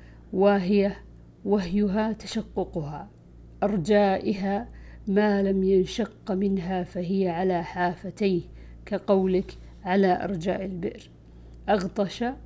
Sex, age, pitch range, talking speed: female, 50-69, 165-200 Hz, 75 wpm